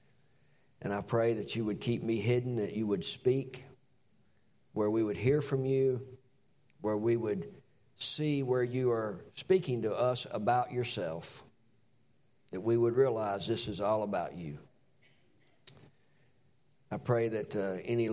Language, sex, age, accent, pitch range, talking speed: English, male, 50-69, American, 105-135 Hz, 150 wpm